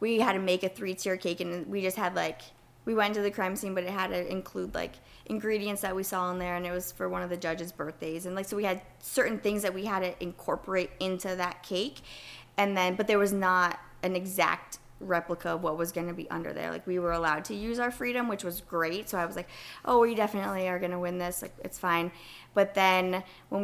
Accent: American